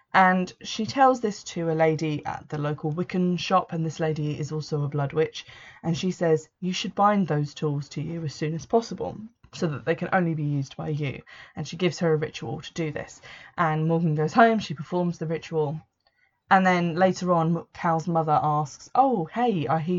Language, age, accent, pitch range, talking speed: English, 20-39, British, 155-180 Hz, 215 wpm